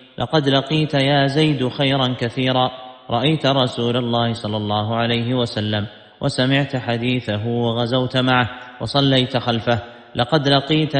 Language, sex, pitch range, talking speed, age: Arabic, male, 120-135 Hz, 115 wpm, 30-49